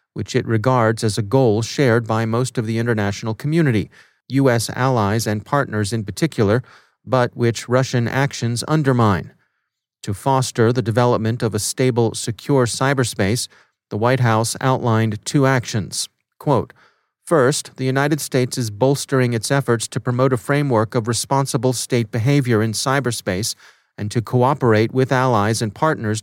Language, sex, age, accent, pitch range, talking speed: English, male, 40-59, American, 110-130 Hz, 150 wpm